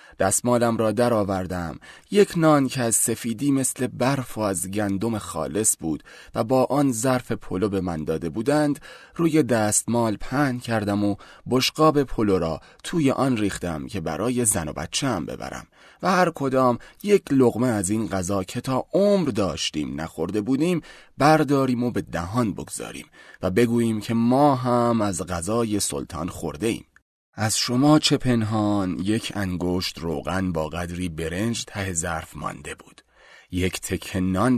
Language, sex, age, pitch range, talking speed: Persian, male, 30-49, 100-130 Hz, 145 wpm